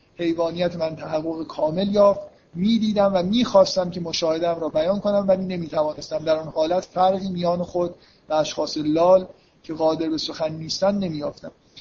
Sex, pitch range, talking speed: male, 160-205 Hz, 165 wpm